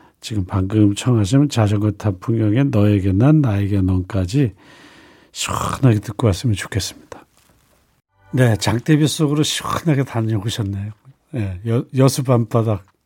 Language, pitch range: Korean, 105-145 Hz